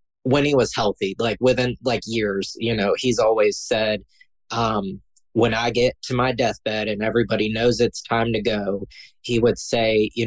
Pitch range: 110-125 Hz